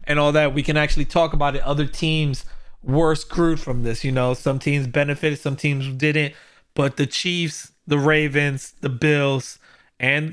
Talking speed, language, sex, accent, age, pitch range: 180 wpm, English, male, American, 30-49, 130-160 Hz